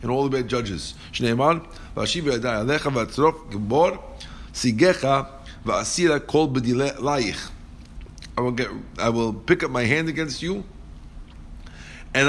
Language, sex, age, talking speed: English, male, 50-69, 85 wpm